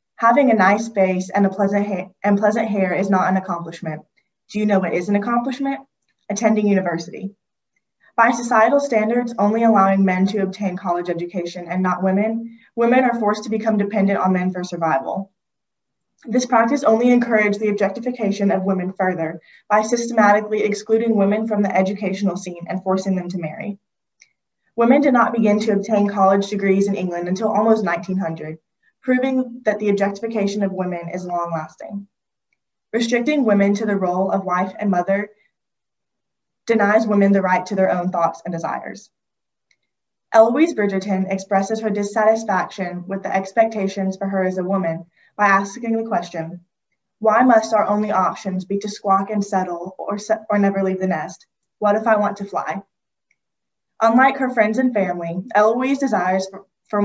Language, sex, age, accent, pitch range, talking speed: English, female, 20-39, American, 185-220 Hz, 165 wpm